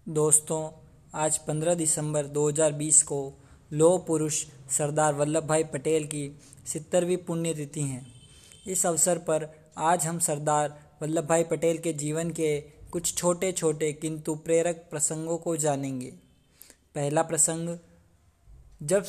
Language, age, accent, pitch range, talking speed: Hindi, 20-39, native, 150-165 Hz, 130 wpm